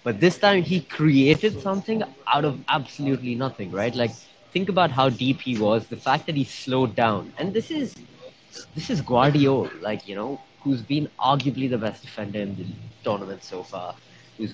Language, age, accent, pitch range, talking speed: English, 20-39, Indian, 105-140 Hz, 185 wpm